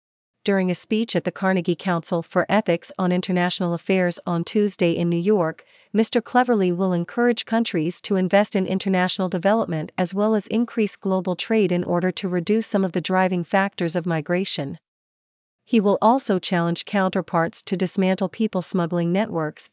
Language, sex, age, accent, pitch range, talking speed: English, female, 40-59, American, 175-205 Hz, 160 wpm